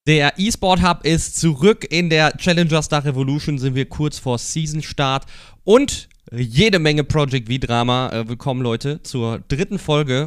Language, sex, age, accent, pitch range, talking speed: German, male, 30-49, German, 110-145 Hz, 160 wpm